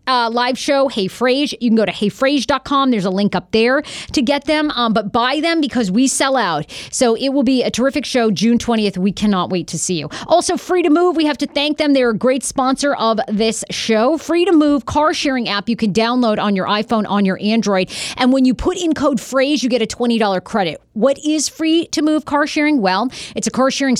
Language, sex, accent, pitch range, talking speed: English, female, American, 205-275 Hz, 240 wpm